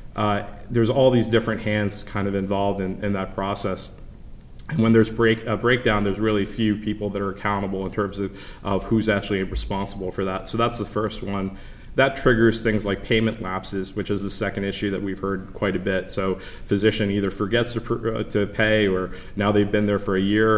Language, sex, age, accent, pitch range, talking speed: English, male, 30-49, American, 95-105 Hz, 210 wpm